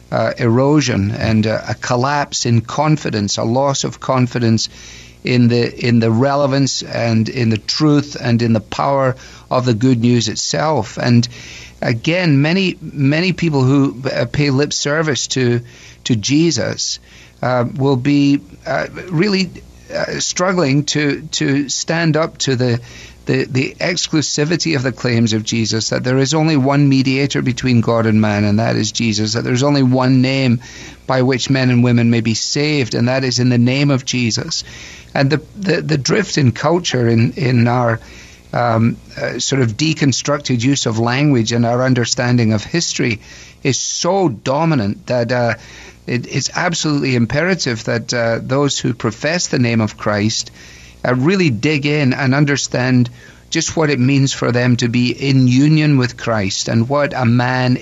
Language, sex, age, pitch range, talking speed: English, male, 50-69, 115-145 Hz, 165 wpm